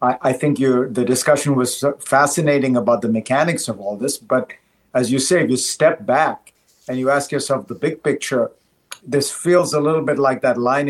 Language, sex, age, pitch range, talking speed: English, male, 50-69, 125-150 Hz, 195 wpm